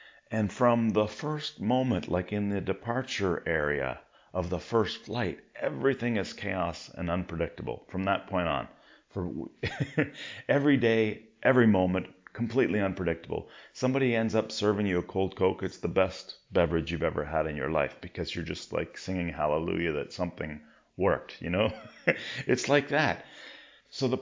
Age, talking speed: 40-59, 160 wpm